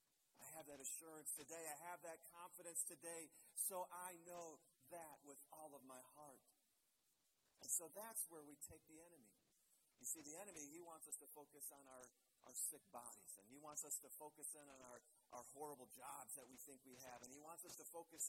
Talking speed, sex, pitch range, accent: 205 wpm, male, 165-235 Hz, American